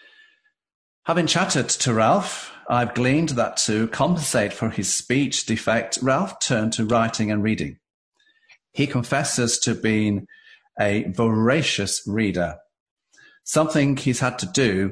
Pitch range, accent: 110-155 Hz, British